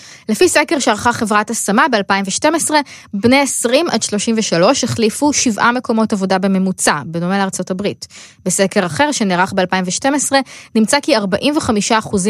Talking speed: 110 wpm